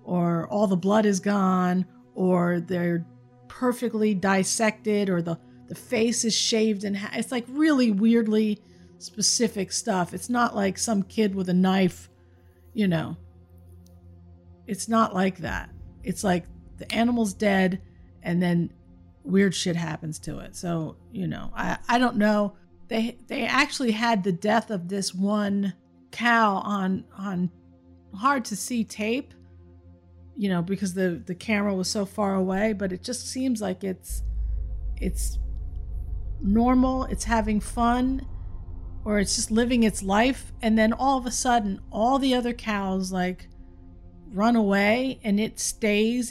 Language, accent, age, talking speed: English, American, 50-69, 150 wpm